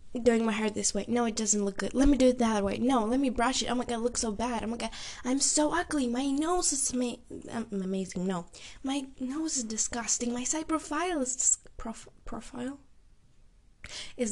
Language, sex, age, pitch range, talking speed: English, female, 10-29, 210-285 Hz, 220 wpm